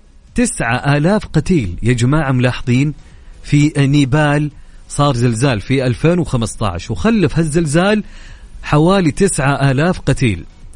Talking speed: 105 wpm